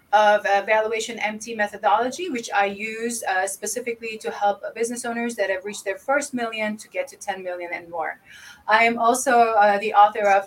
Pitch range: 205-255 Hz